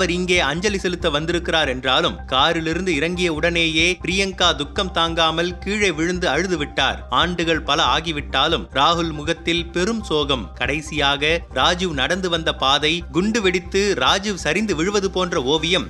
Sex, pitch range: male, 160-185 Hz